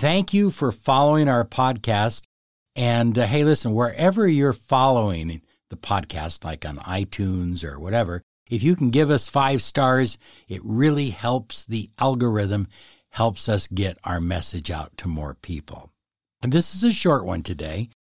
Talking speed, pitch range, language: 160 wpm, 95-140 Hz, English